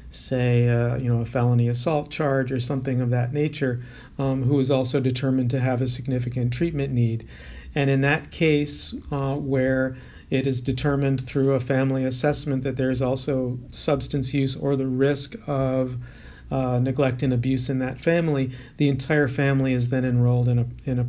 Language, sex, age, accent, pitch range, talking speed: English, male, 40-59, American, 125-140 Hz, 180 wpm